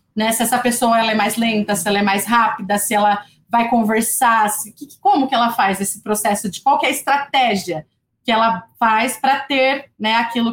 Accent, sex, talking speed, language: Brazilian, female, 215 wpm, Portuguese